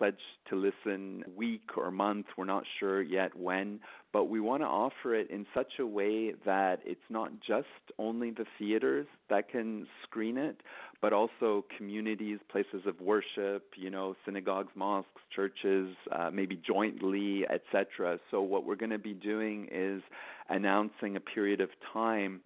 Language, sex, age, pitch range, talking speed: English, male, 40-59, 95-105 Hz, 160 wpm